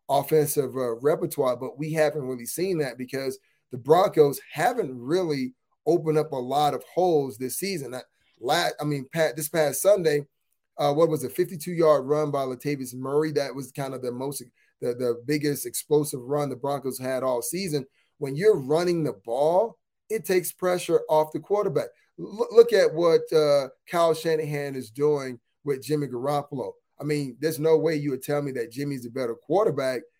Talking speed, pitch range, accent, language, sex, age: 185 wpm, 140-170 Hz, American, English, male, 30-49